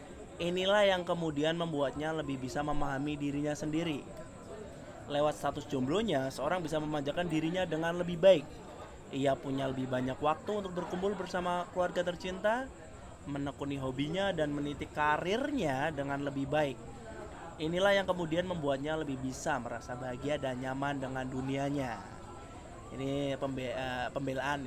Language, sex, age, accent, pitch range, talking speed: Indonesian, male, 20-39, native, 130-165 Hz, 130 wpm